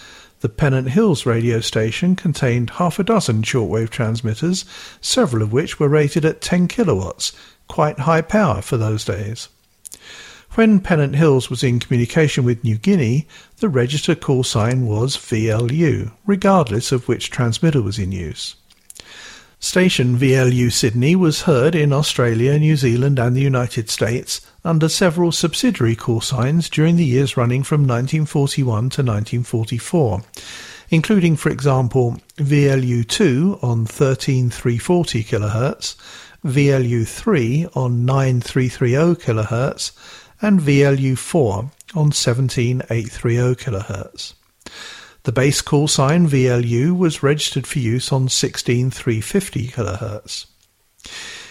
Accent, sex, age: British, male, 50-69